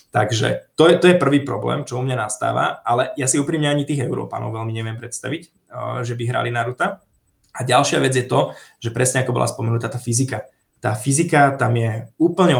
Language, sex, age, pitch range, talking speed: Slovak, male, 20-39, 125-140 Hz, 200 wpm